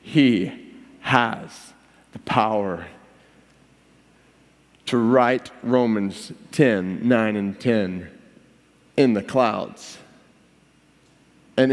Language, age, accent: English, 40-59, American